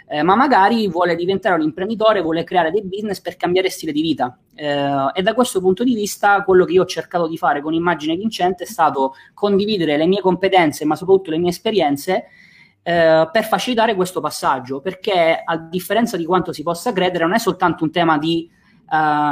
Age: 20-39